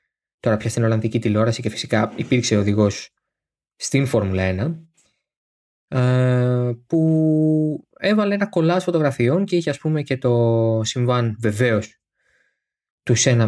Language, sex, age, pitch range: Greek, male, 20-39, 120-175 Hz